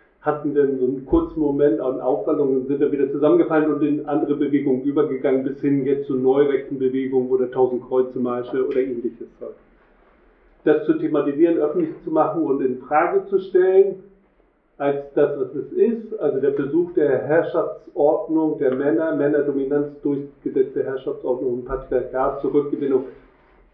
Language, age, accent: German, 50-69, German